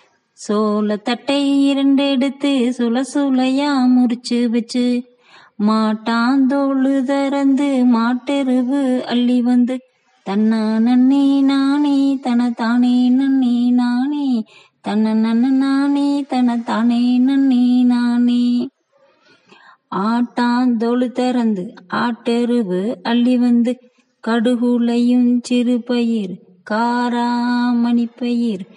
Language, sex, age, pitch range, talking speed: Tamil, female, 20-39, 235-265 Hz, 55 wpm